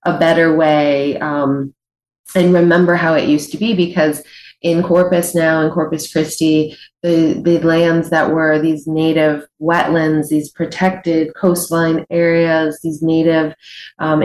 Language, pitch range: English, 145-170 Hz